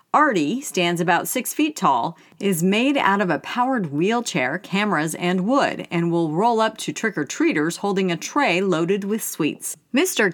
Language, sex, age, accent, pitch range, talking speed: English, female, 40-59, American, 175-245 Hz, 170 wpm